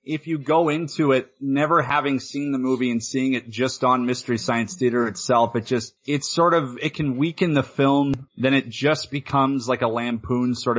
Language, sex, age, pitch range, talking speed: English, male, 30-49, 130-170 Hz, 205 wpm